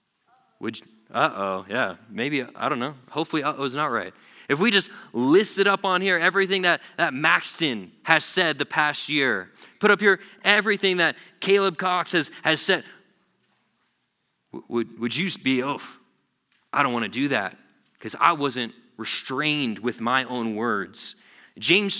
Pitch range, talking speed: 130-180 Hz, 165 wpm